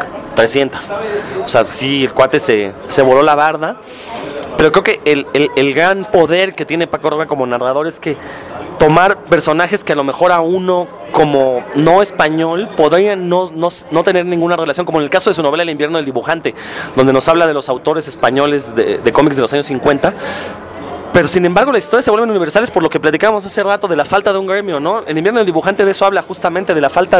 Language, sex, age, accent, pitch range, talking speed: English, male, 30-49, Mexican, 145-185 Hz, 225 wpm